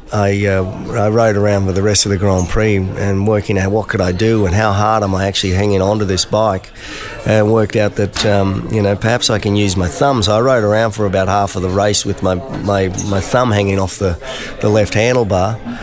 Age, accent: 30-49, Australian